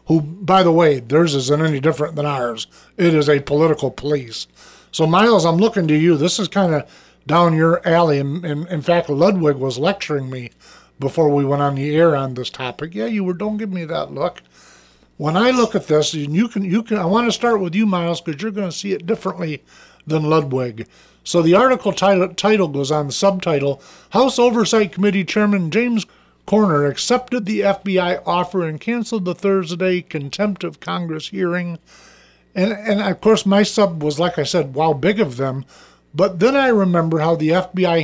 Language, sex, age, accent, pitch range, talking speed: English, male, 50-69, American, 150-200 Hz, 200 wpm